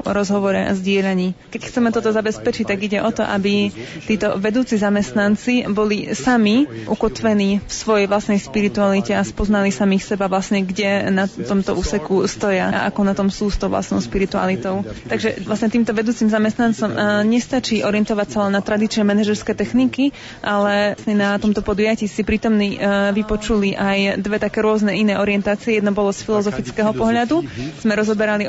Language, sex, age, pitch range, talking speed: Slovak, female, 20-39, 200-220 Hz, 155 wpm